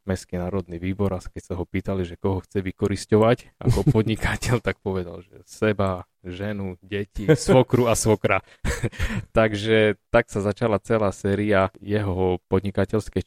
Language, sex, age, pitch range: Slovak, male, 20-39, 90-105 Hz